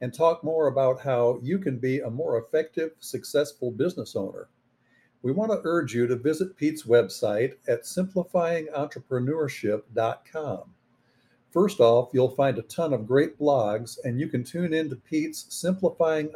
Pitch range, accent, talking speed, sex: 125-160 Hz, American, 155 wpm, male